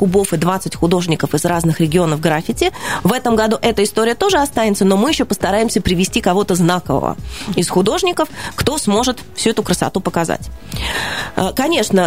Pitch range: 175-215 Hz